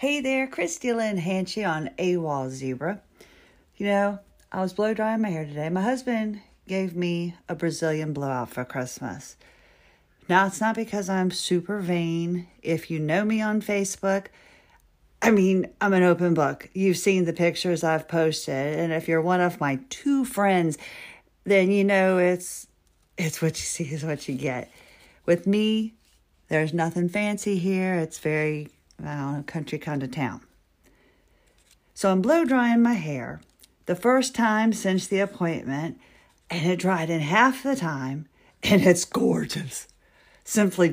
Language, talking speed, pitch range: English, 160 wpm, 160-210 Hz